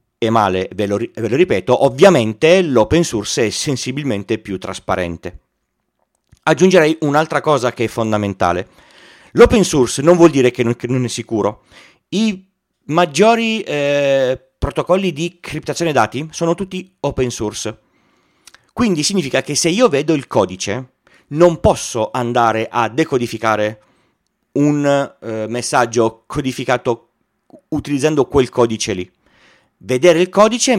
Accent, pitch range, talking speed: native, 115-175 Hz, 125 wpm